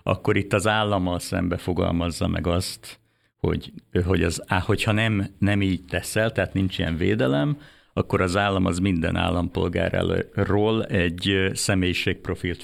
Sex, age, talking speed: male, 50-69, 135 wpm